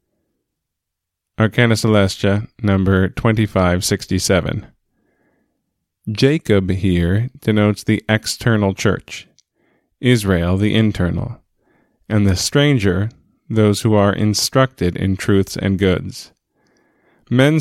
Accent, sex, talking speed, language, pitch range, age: American, male, 85 wpm, English, 95-115 Hz, 20-39